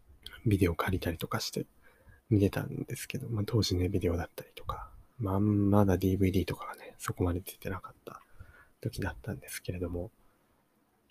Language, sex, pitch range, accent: Japanese, male, 90-125 Hz, native